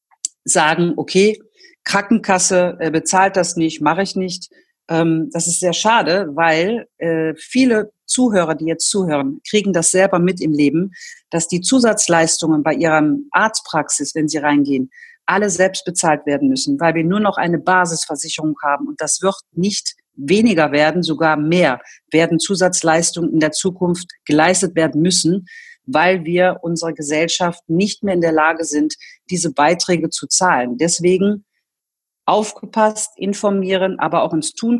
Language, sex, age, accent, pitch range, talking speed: German, female, 50-69, German, 160-195 Hz, 150 wpm